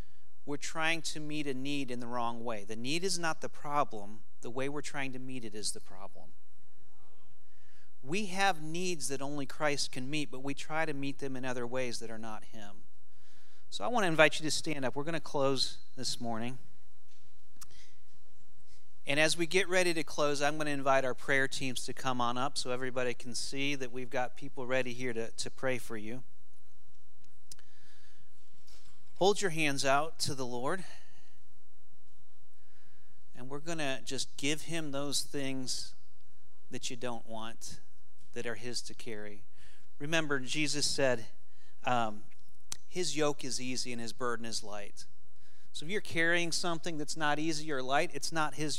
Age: 40-59